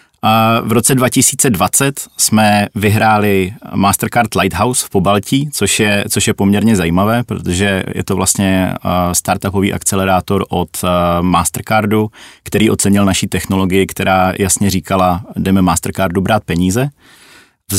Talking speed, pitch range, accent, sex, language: 120 wpm, 95-110 Hz, native, male, Czech